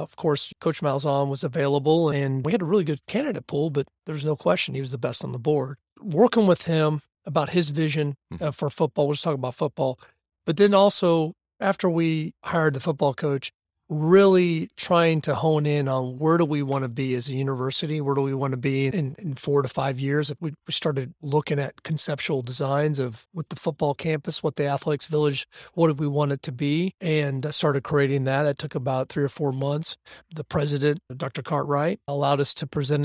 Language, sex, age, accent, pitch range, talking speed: English, male, 40-59, American, 140-160 Hz, 215 wpm